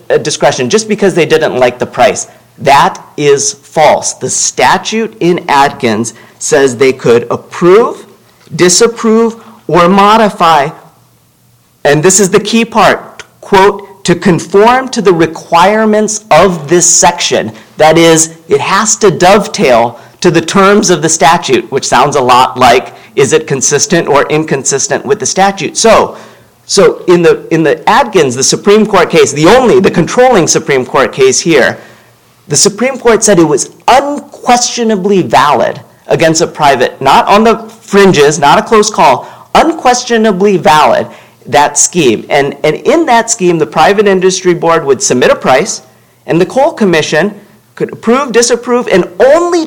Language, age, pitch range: English, 40-59, 160-220 Hz